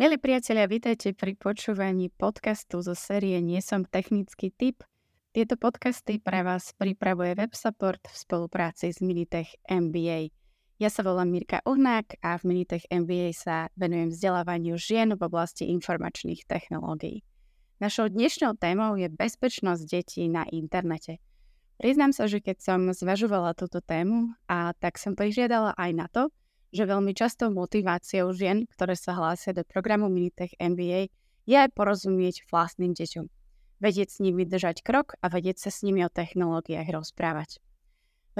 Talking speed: 145 wpm